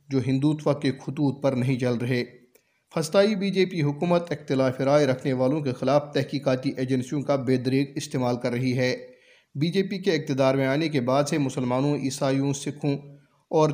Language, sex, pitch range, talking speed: Urdu, male, 135-160 Hz, 185 wpm